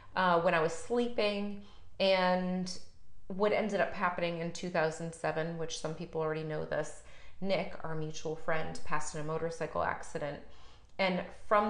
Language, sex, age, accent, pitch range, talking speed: English, female, 30-49, American, 165-195 Hz, 150 wpm